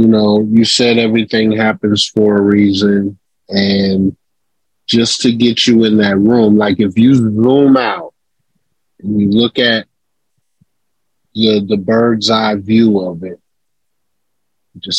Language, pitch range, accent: English, 100-120 Hz, American